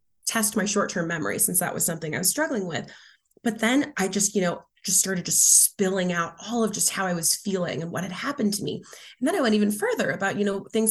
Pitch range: 180-215 Hz